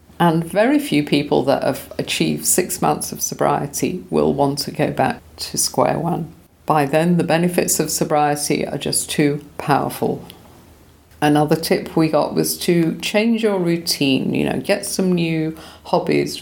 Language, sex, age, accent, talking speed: English, female, 50-69, British, 160 wpm